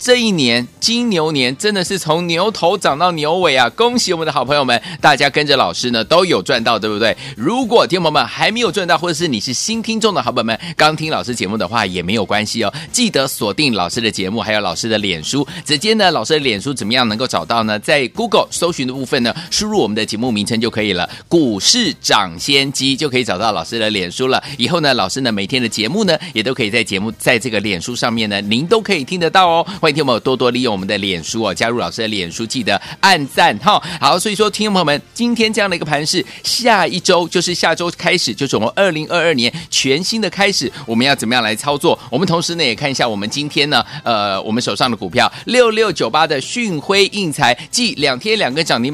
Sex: male